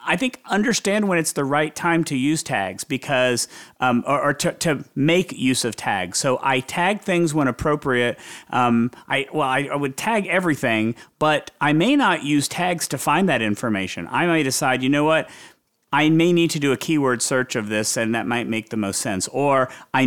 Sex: male